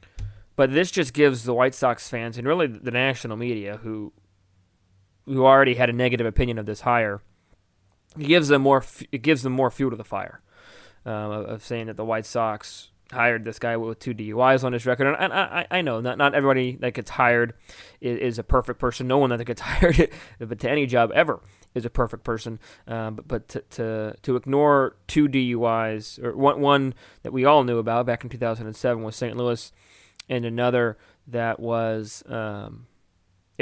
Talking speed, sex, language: 200 wpm, male, English